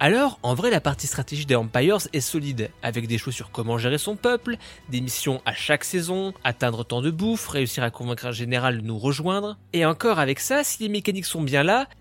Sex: male